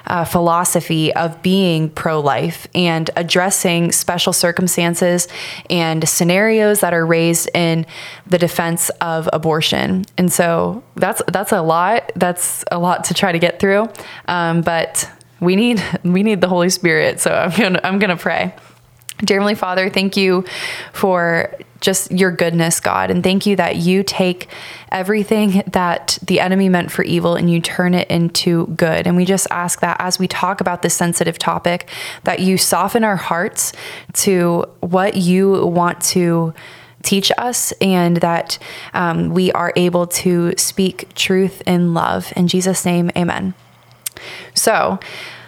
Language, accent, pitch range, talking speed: English, American, 170-190 Hz, 155 wpm